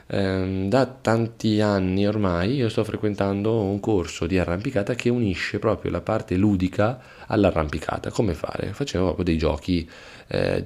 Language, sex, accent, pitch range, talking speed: Italian, male, native, 85-105 Hz, 140 wpm